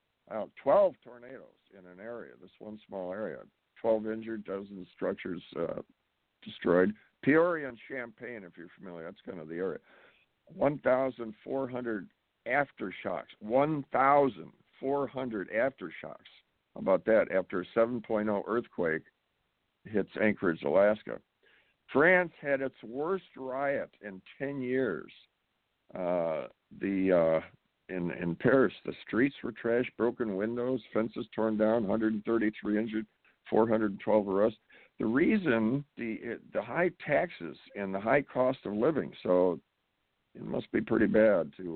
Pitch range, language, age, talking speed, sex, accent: 100-130 Hz, English, 60-79, 125 wpm, male, American